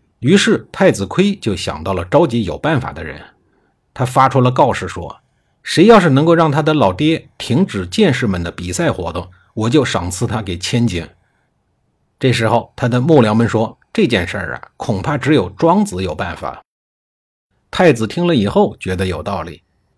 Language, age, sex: Chinese, 50-69, male